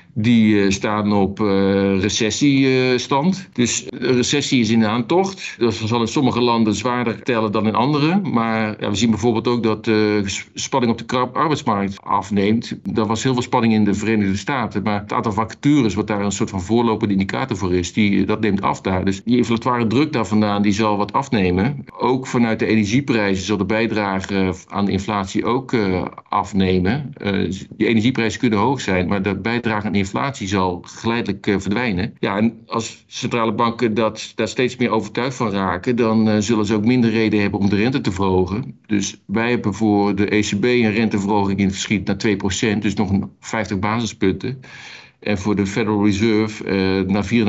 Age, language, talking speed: 50-69, Dutch, 185 wpm